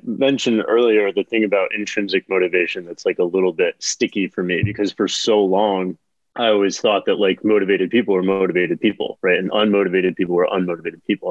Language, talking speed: English, 190 wpm